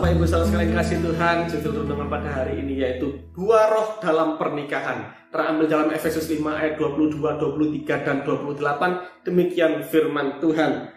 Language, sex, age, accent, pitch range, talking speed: Indonesian, male, 20-39, native, 155-190 Hz, 150 wpm